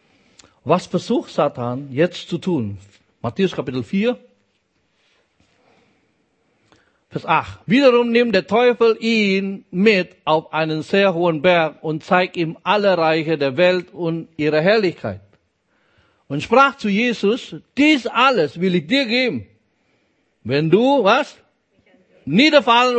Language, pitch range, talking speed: German, 155-240 Hz, 120 wpm